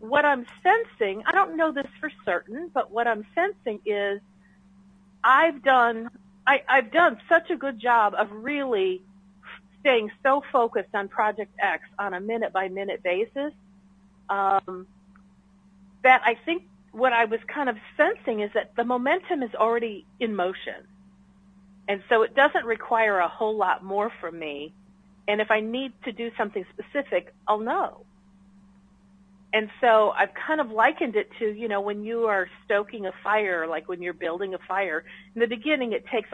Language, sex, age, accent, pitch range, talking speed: English, female, 40-59, American, 195-235 Hz, 160 wpm